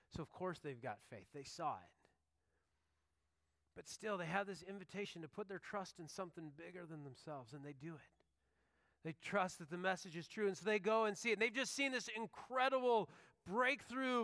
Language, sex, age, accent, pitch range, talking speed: English, male, 30-49, American, 140-200 Hz, 200 wpm